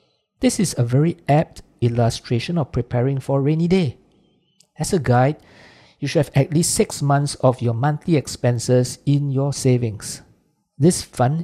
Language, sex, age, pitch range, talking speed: English, male, 50-69, 125-155 Hz, 165 wpm